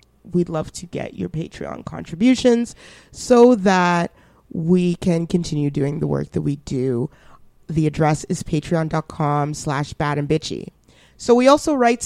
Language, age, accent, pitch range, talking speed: English, 30-49, American, 145-185 Hz, 140 wpm